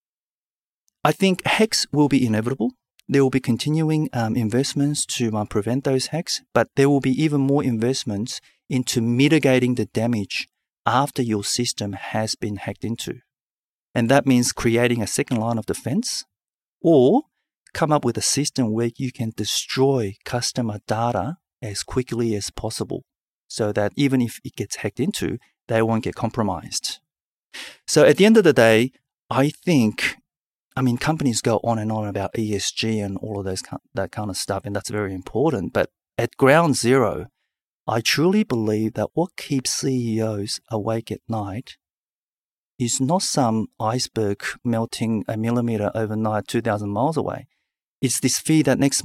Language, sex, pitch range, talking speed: English, male, 110-135 Hz, 160 wpm